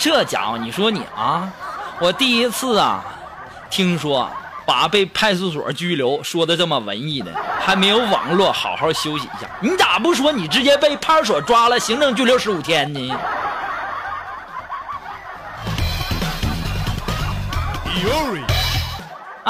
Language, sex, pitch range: Chinese, male, 175-255 Hz